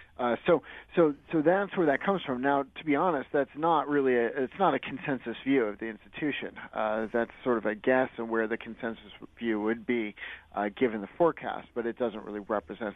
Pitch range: 105-130 Hz